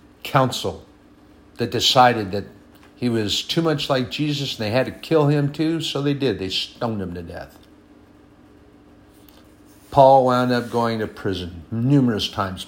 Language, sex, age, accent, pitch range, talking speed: English, male, 50-69, American, 100-125 Hz, 155 wpm